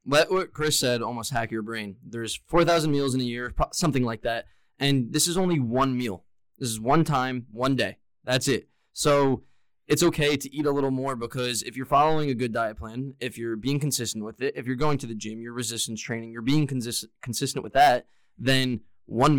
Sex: male